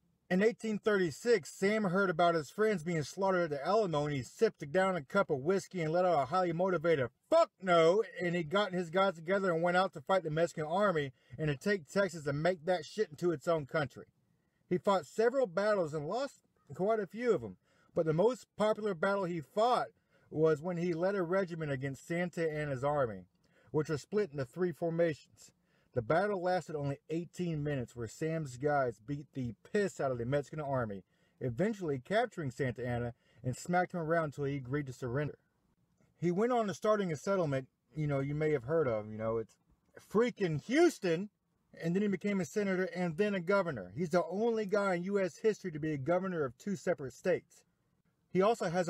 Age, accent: 40-59, American